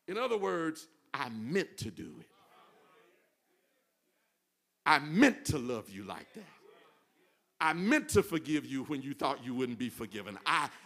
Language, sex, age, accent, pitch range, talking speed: English, male, 50-69, American, 155-215 Hz, 155 wpm